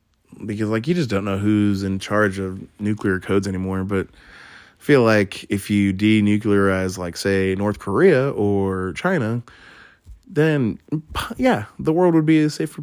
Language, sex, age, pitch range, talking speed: English, male, 20-39, 95-125 Hz, 160 wpm